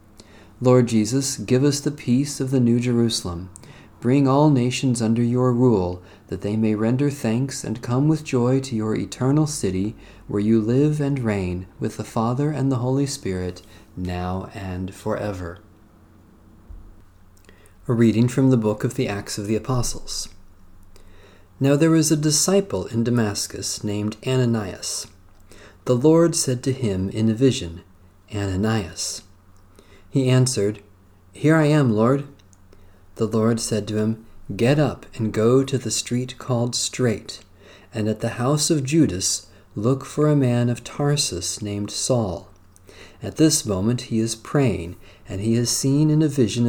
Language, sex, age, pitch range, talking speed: English, male, 40-59, 100-130 Hz, 155 wpm